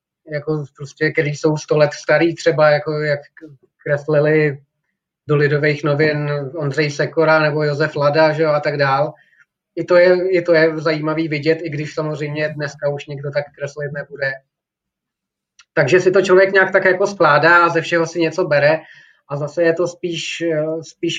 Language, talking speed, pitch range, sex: Czech, 175 wpm, 150-170 Hz, male